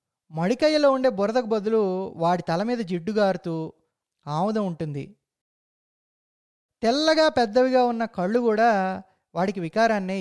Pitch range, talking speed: 165-240 Hz, 100 wpm